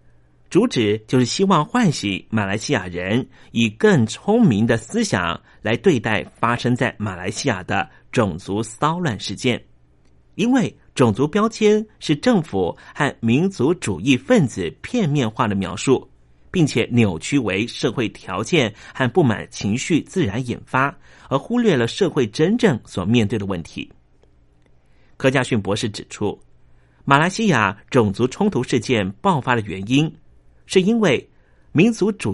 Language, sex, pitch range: Chinese, male, 100-150 Hz